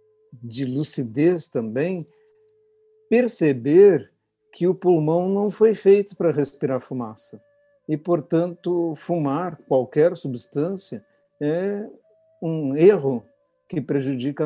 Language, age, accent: Portuguese, 60-79, Brazilian